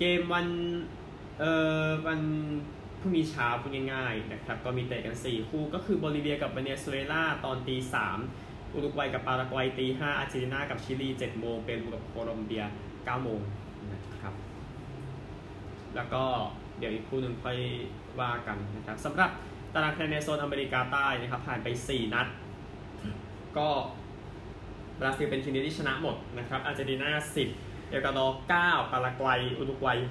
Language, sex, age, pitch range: Thai, male, 20-39, 110-140 Hz